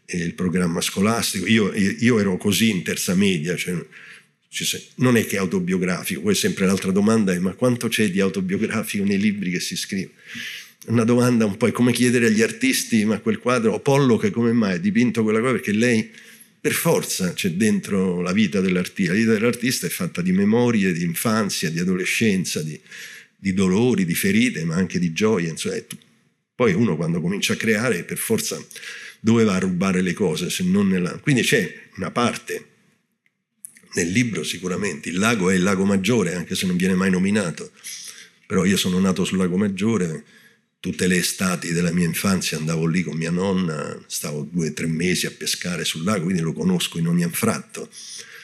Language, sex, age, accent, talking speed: Italian, male, 50-69, native, 185 wpm